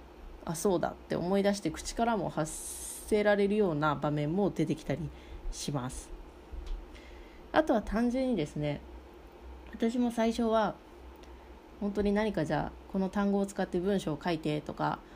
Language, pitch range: Japanese, 150-205 Hz